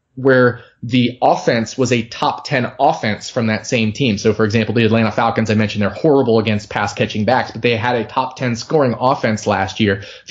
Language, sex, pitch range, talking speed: English, male, 110-135 Hz, 210 wpm